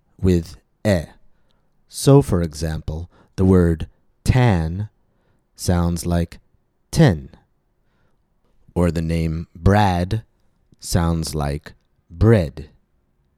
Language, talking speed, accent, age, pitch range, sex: English, 80 wpm, American, 30-49, 85-110 Hz, male